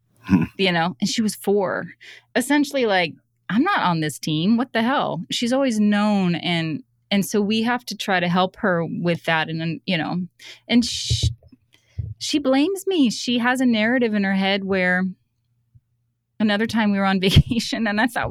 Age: 30-49